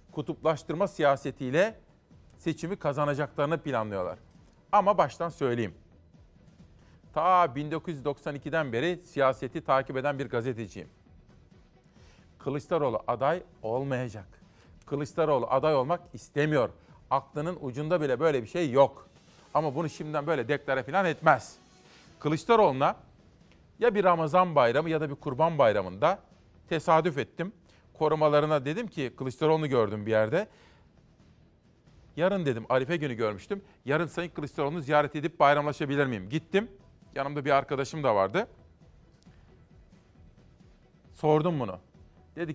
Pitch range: 130-165 Hz